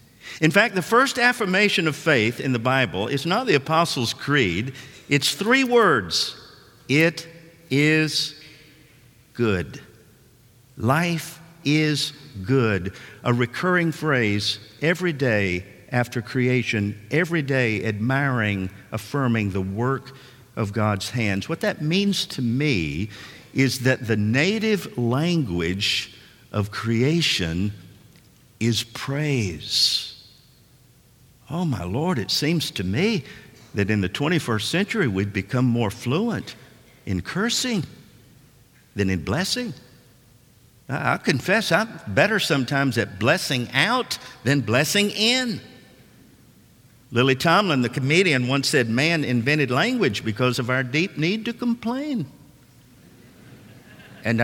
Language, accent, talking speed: English, American, 115 wpm